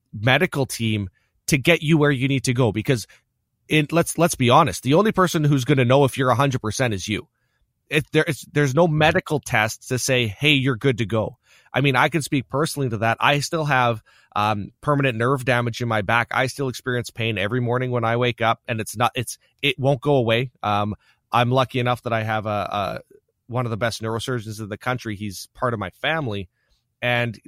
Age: 30-49